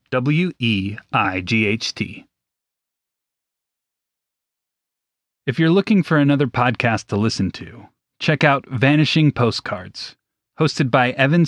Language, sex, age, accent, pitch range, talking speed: English, male, 30-49, American, 115-145 Hz, 115 wpm